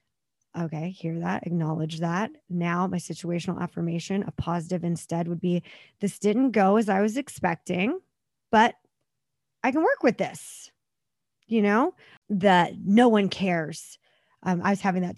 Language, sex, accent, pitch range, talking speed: English, female, American, 170-215 Hz, 150 wpm